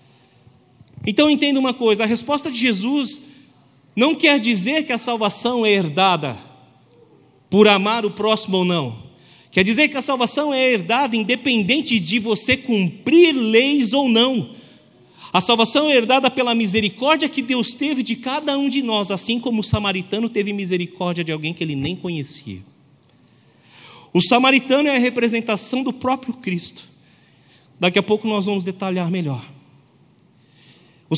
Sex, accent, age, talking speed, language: male, Brazilian, 40-59, 150 wpm, Portuguese